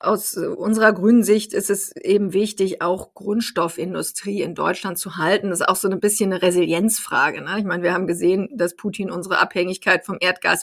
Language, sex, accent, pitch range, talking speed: German, female, German, 180-205 Hz, 190 wpm